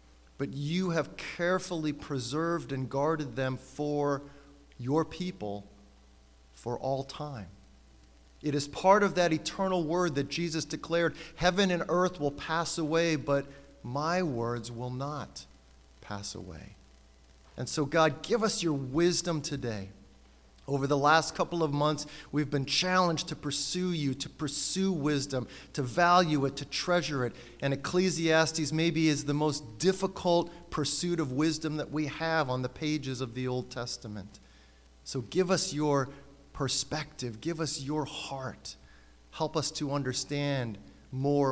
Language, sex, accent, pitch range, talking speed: English, male, American, 110-160 Hz, 145 wpm